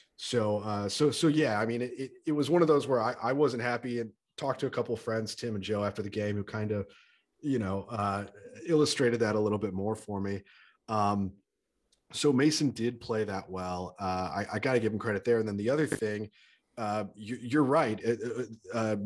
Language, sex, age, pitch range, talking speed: English, male, 30-49, 100-125 Hz, 230 wpm